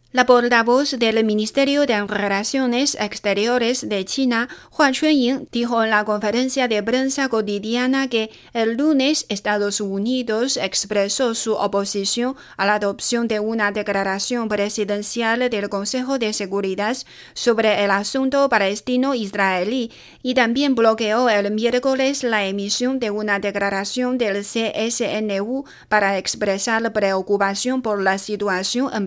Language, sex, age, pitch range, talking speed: Spanish, female, 30-49, 200-245 Hz, 125 wpm